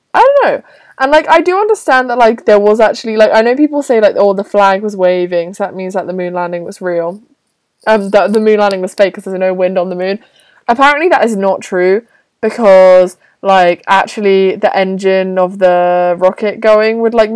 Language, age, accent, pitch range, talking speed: English, 20-39, British, 185-245 Hz, 220 wpm